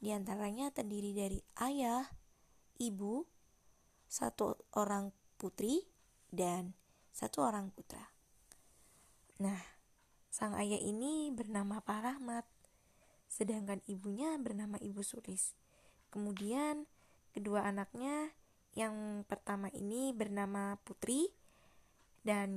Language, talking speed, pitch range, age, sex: Indonesian, 90 wpm, 200-245 Hz, 20-39, female